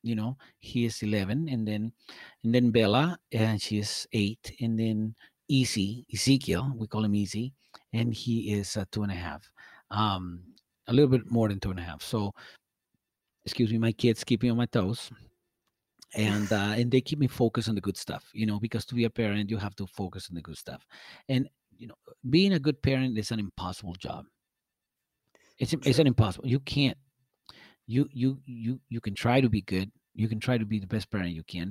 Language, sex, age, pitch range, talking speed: English, male, 40-59, 100-120 Hz, 210 wpm